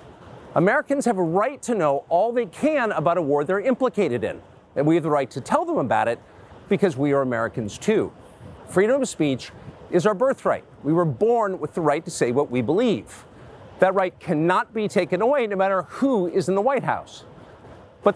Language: English